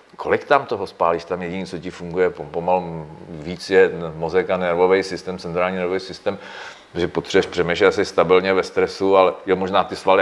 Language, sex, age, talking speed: Czech, male, 40-59, 180 wpm